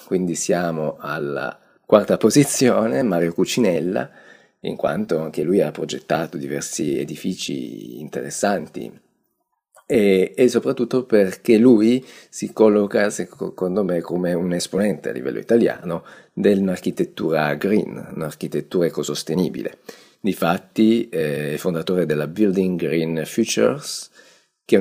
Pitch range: 80-115 Hz